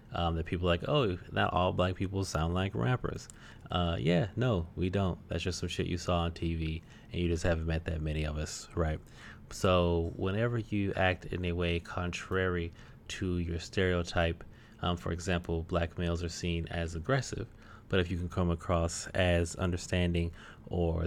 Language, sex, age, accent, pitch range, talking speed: English, male, 30-49, American, 85-95 Hz, 180 wpm